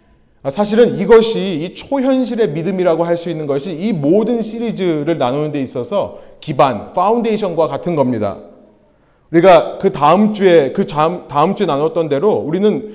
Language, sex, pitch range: Korean, male, 165-230 Hz